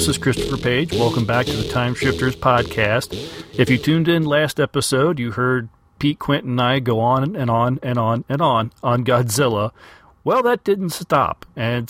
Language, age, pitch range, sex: English, 40-59, 115-145 Hz, male